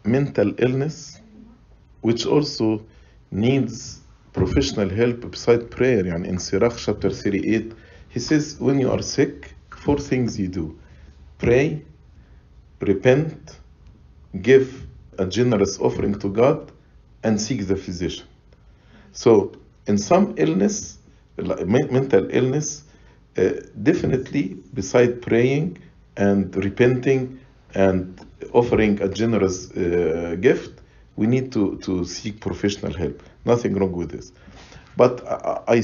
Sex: male